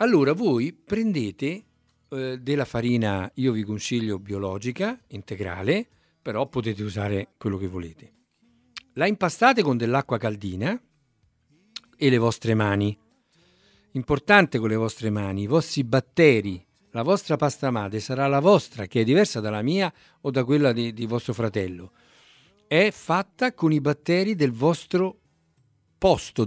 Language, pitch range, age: Italian, 110-160 Hz, 50-69